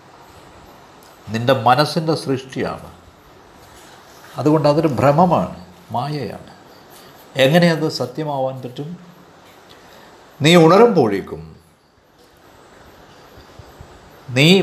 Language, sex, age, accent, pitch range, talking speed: Malayalam, male, 50-69, native, 130-165 Hz, 55 wpm